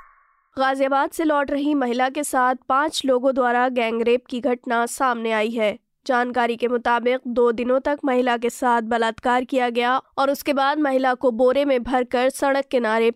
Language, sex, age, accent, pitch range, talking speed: Hindi, female, 20-39, native, 230-265 Hz, 175 wpm